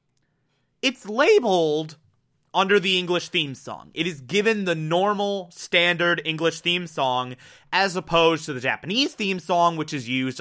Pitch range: 150-230 Hz